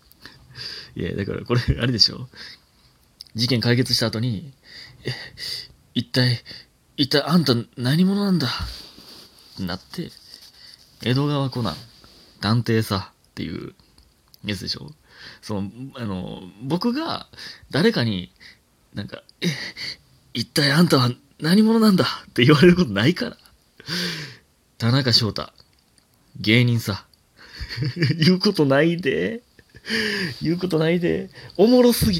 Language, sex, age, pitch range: Japanese, male, 30-49, 110-165 Hz